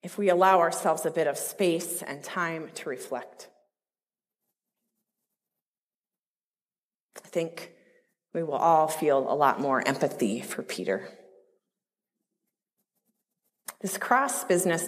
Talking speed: 110 wpm